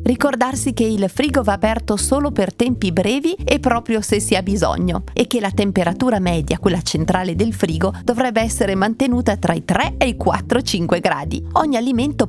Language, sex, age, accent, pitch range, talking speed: Italian, female, 40-59, native, 180-240 Hz, 185 wpm